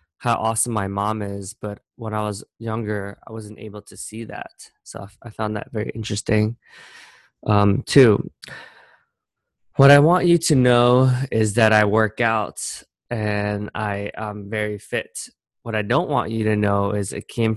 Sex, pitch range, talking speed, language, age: male, 100-115 Hz, 170 wpm, English, 20-39